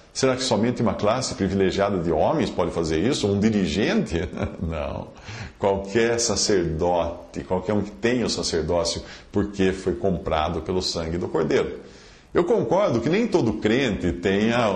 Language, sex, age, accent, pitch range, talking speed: English, male, 50-69, Brazilian, 85-105 Hz, 145 wpm